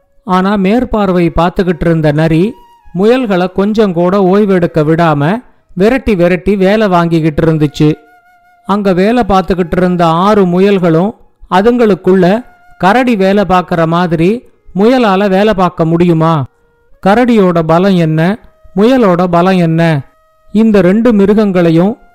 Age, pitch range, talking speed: 50-69, 175-215 Hz, 105 wpm